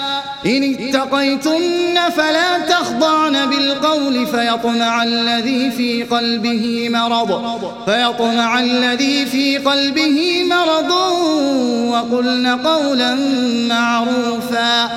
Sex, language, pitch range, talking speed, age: male, Arabic, 240-295 Hz, 70 wpm, 30-49